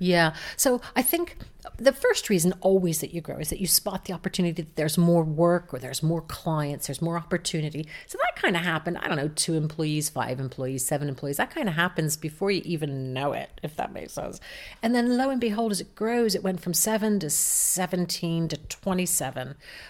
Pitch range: 150-190 Hz